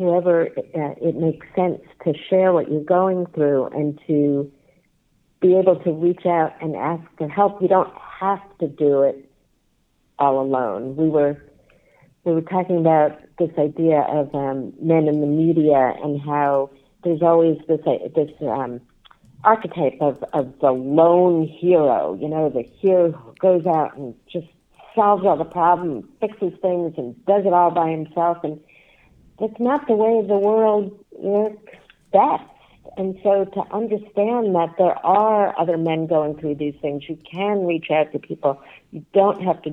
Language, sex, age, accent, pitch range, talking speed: English, female, 60-79, American, 150-195 Hz, 165 wpm